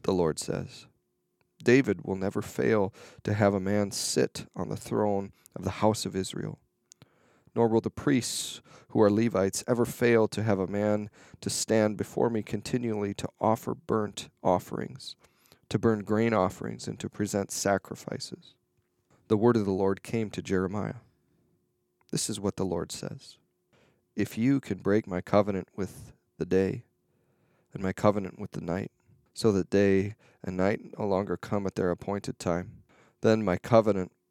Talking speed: 165 wpm